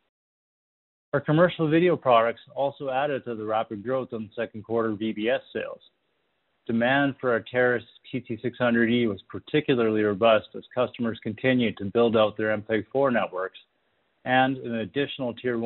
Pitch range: 110-125 Hz